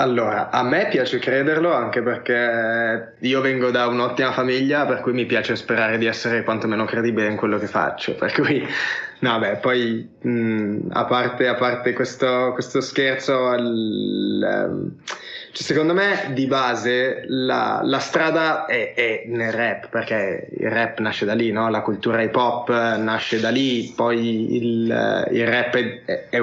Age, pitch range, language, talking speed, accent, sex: 20-39, 115-130 Hz, Italian, 165 wpm, native, male